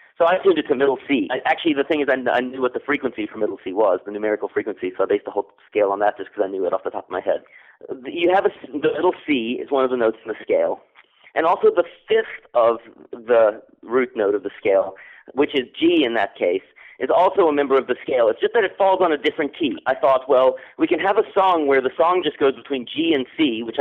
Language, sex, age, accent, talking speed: English, male, 40-59, American, 275 wpm